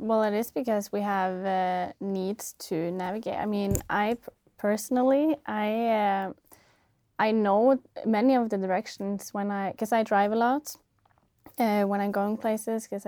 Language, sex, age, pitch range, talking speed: English, female, 20-39, 195-225 Hz, 165 wpm